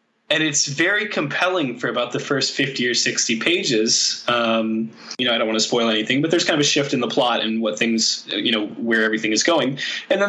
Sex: male